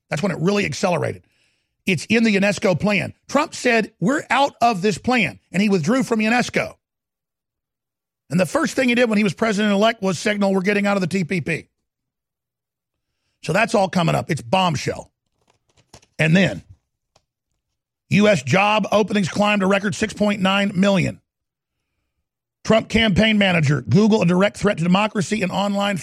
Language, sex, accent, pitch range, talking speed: English, male, American, 165-210 Hz, 155 wpm